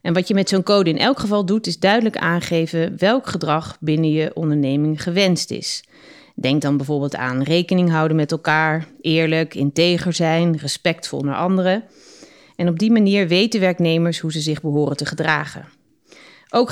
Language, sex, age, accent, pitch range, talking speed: English, female, 30-49, Dutch, 150-185 Hz, 170 wpm